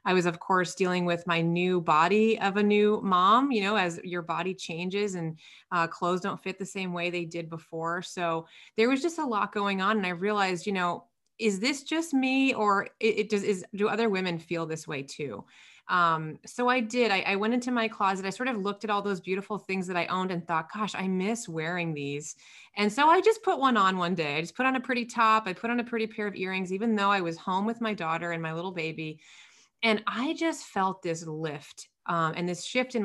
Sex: female